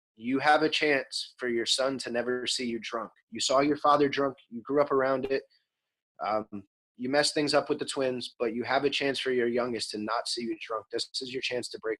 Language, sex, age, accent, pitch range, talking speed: English, male, 30-49, American, 120-145 Hz, 245 wpm